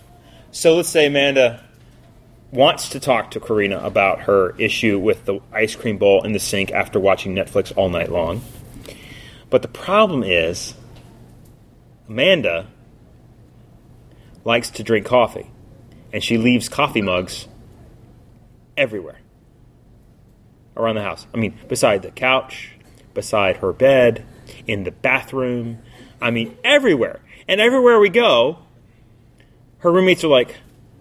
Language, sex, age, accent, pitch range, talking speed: English, male, 30-49, American, 115-175 Hz, 130 wpm